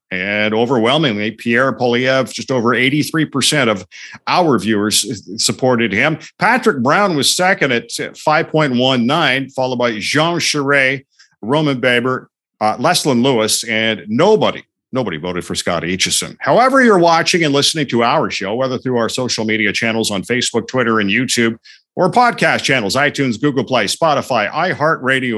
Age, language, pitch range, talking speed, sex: 50-69, English, 120-170 Hz, 140 wpm, male